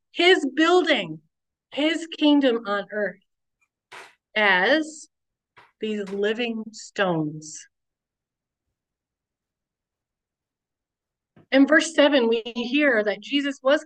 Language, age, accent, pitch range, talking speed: English, 30-49, American, 195-275 Hz, 80 wpm